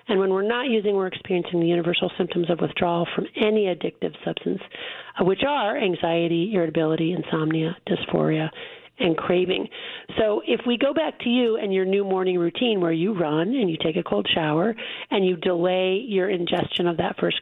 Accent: American